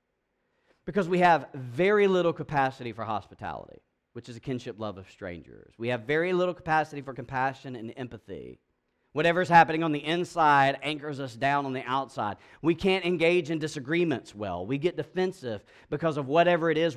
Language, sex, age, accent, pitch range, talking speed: English, male, 40-59, American, 100-150 Hz, 175 wpm